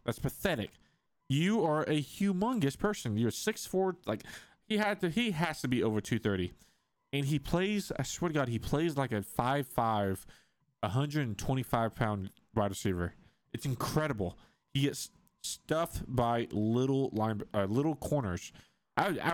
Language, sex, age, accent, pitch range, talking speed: English, male, 20-39, American, 105-155 Hz, 150 wpm